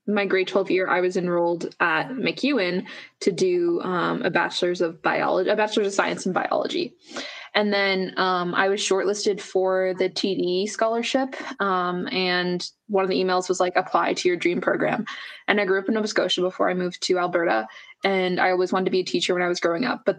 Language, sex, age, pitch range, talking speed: English, female, 20-39, 180-205 Hz, 210 wpm